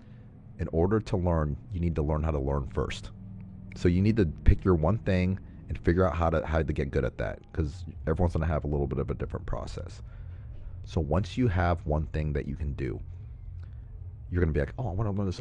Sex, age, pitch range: male, 30-49, 80-100 Hz